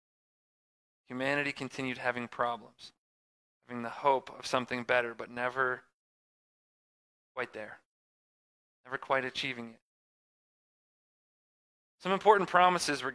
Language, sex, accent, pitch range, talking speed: English, male, American, 120-150 Hz, 100 wpm